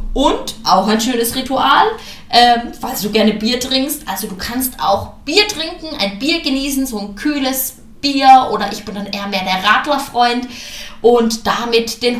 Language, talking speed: German, 170 wpm